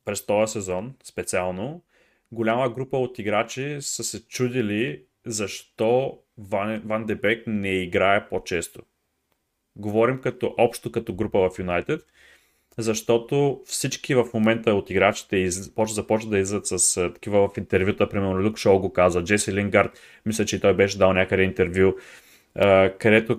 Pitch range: 100-120 Hz